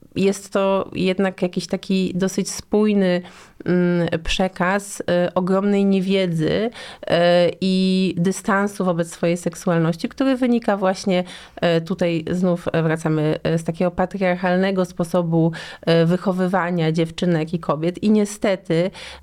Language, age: Polish, 30-49